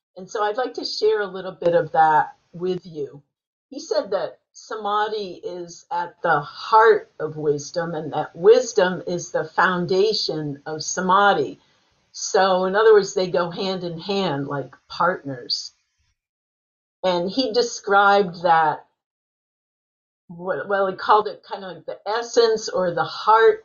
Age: 50-69